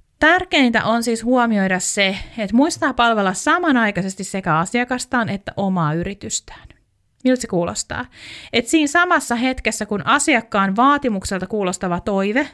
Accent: native